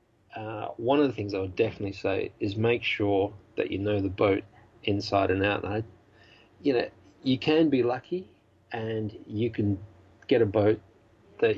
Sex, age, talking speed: male, 40-59, 165 wpm